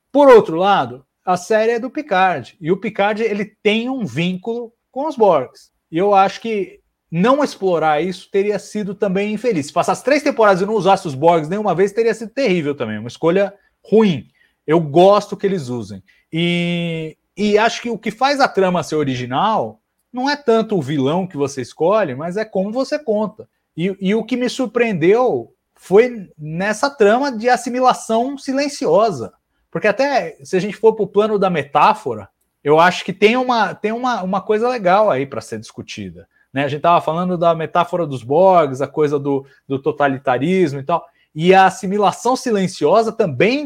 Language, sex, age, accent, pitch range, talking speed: Portuguese, male, 30-49, Brazilian, 165-230 Hz, 185 wpm